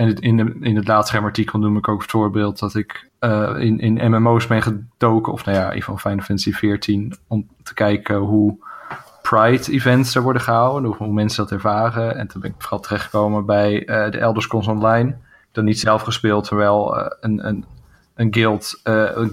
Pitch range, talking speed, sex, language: 105-115 Hz, 205 wpm, male, Dutch